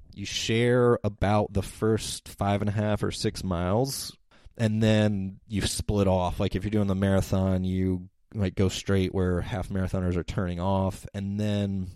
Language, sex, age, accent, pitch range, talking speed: English, male, 20-39, American, 90-105 Hz, 175 wpm